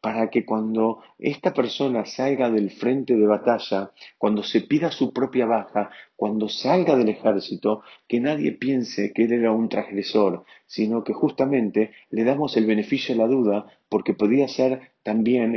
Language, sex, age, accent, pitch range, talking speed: Spanish, male, 40-59, Argentinian, 100-125 Hz, 160 wpm